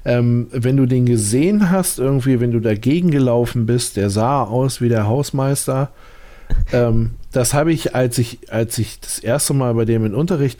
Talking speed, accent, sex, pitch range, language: 185 wpm, German, male, 115-170 Hz, German